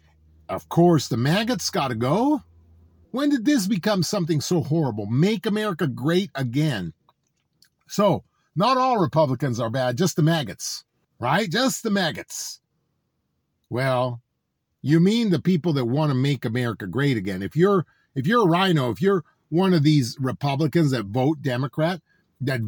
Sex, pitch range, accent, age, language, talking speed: male, 130-195 Hz, American, 50-69, English, 155 wpm